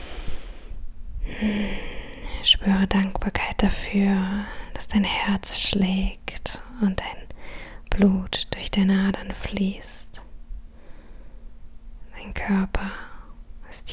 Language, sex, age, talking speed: German, female, 20-39, 80 wpm